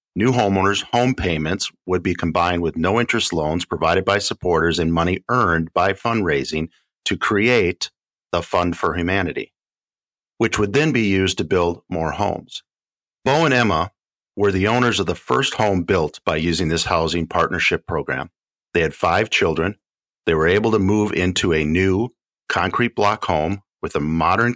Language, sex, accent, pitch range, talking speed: English, male, American, 85-110 Hz, 165 wpm